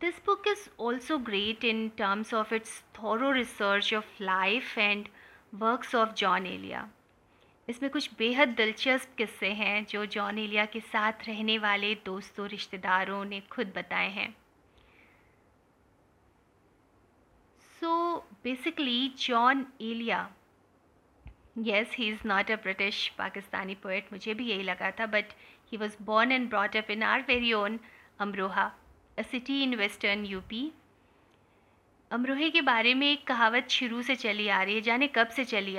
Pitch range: 205-240 Hz